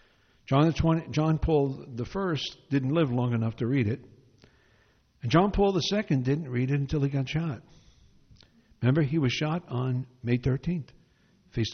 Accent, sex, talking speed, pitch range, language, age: American, male, 170 wpm, 125-160 Hz, English, 60-79